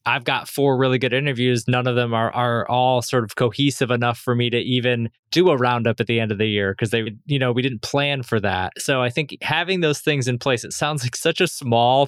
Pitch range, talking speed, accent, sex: 115-135 Hz, 260 wpm, American, male